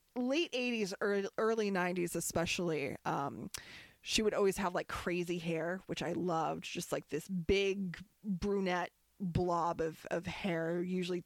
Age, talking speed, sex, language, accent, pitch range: 20-39, 140 wpm, female, English, American, 180-245 Hz